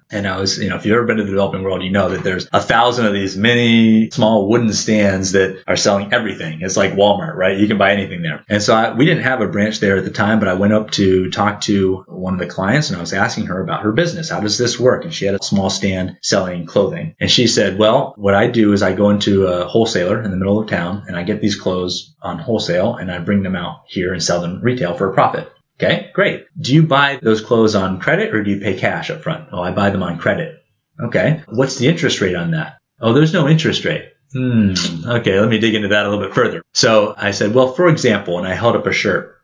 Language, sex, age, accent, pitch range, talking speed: English, male, 30-49, American, 100-125 Hz, 265 wpm